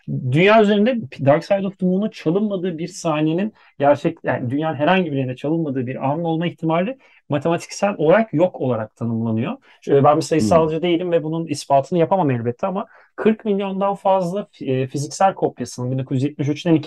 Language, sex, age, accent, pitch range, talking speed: Turkish, male, 40-59, native, 140-180 Hz, 155 wpm